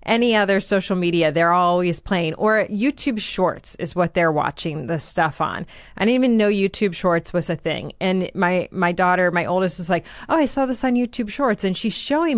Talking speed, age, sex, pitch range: 215 wpm, 30-49, female, 180-245 Hz